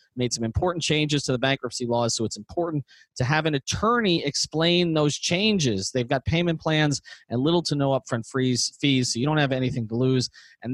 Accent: American